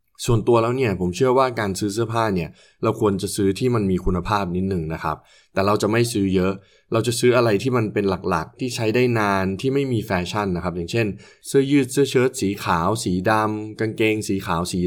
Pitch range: 90-115 Hz